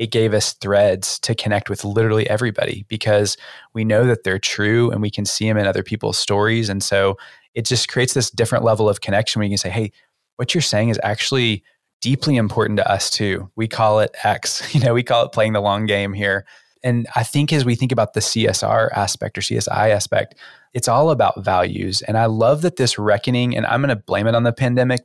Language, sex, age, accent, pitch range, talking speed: English, male, 20-39, American, 100-120 Hz, 230 wpm